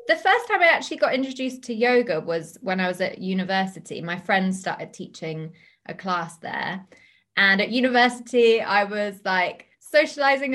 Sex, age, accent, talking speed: female, 20-39, British, 165 wpm